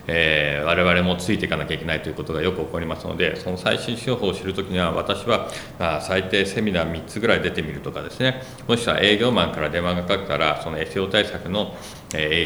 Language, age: Japanese, 40-59